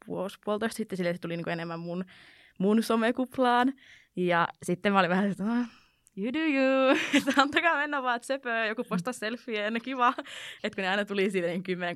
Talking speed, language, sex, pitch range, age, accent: 180 wpm, Finnish, female, 180-240 Hz, 20-39, native